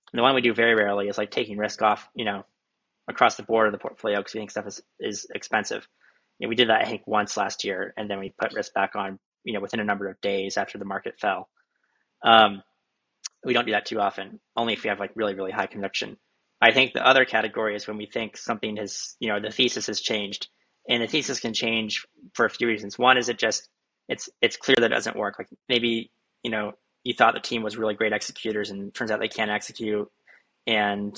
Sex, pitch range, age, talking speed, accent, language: male, 105-115 Hz, 20-39, 245 wpm, American, English